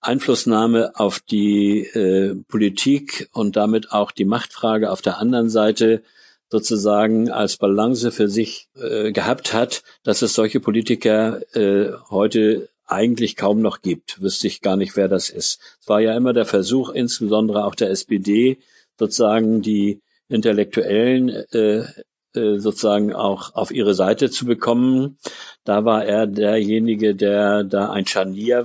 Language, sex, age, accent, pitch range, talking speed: German, male, 50-69, German, 100-115 Hz, 145 wpm